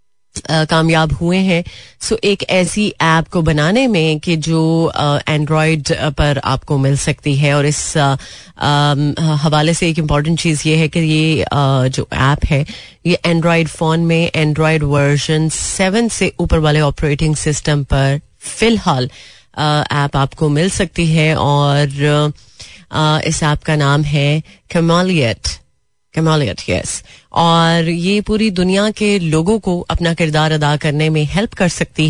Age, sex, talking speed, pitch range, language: 30-49, female, 155 wpm, 150-180 Hz, Hindi